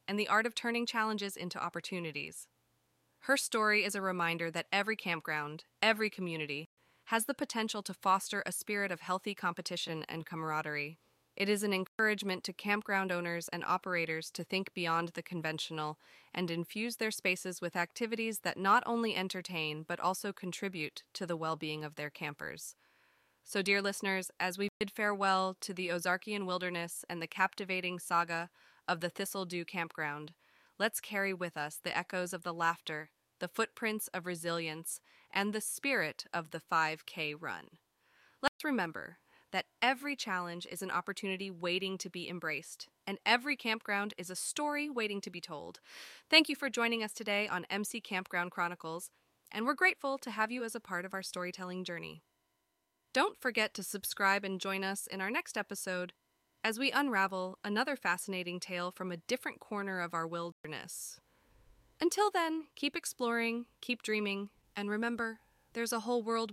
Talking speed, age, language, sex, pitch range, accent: 165 wpm, 20-39, English, female, 175-220 Hz, American